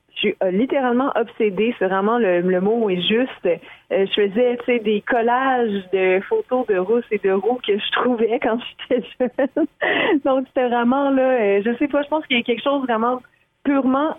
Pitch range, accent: 195-245 Hz, Canadian